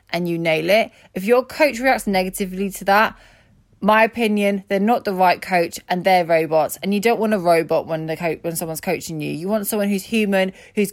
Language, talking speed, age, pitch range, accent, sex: English, 220 wpm, 20-39, 175-220 Hz, British, female